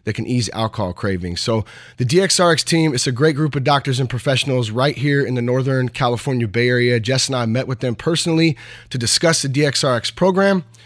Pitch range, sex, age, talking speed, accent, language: 115-150 Hz, male, 30-49, 205 wpm, American, English